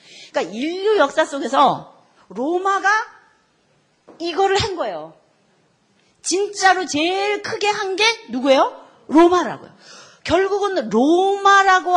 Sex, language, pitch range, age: female, Korean, 240-355 Hz, 40-59